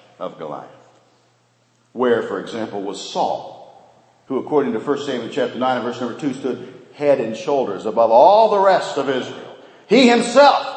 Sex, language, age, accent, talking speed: male, English, 50-69, American, 165 wpm